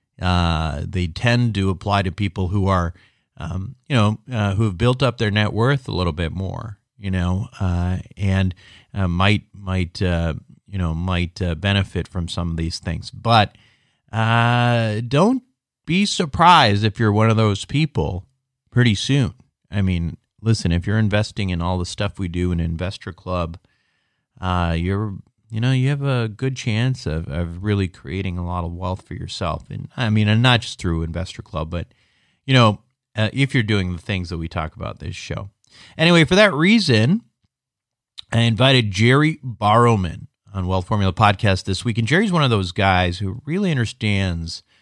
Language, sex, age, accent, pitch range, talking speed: English, male, 40-59, American, 90-120 Hz, 180 wpm